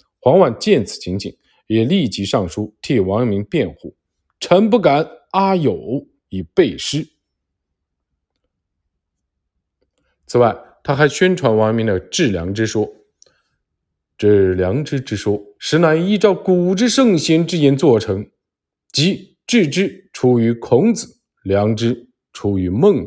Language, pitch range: Chinese, 90-140 Hz